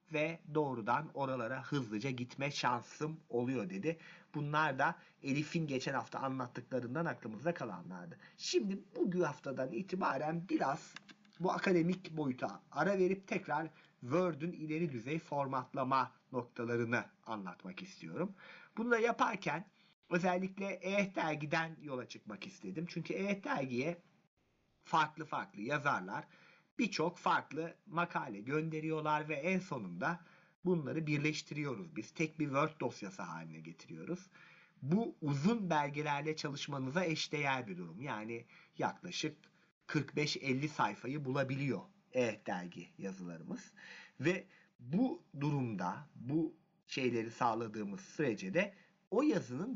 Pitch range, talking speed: 135-180 Hz, 105 wpm